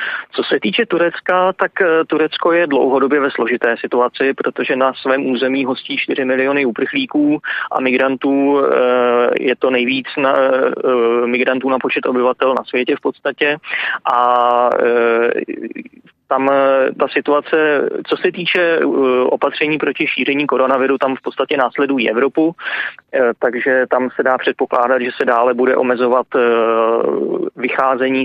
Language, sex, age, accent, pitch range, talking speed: Czech, male, 20-39, native, 125-140 Hz, 125 wpm